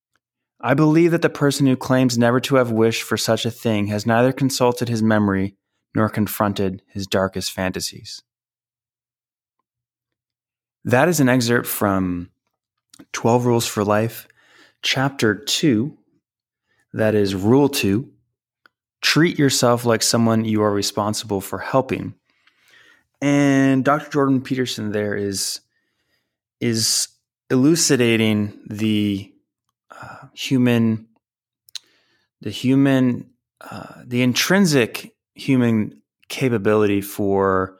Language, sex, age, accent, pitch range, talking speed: English, male, 20-39, American, 100-125 Hz, 110 wpm